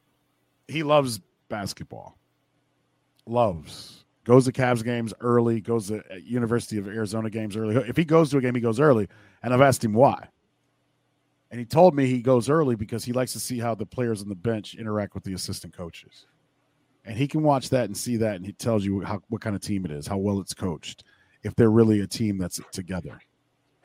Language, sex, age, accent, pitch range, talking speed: English, male, 40-59, American, 95-120 Hz, 205 wpm